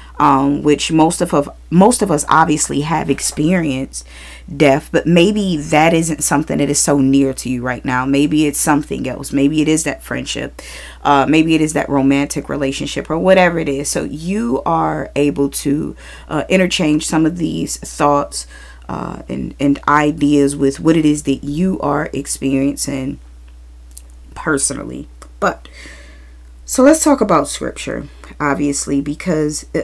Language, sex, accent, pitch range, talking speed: English, female, American, 135-165 Hz, 155 wpm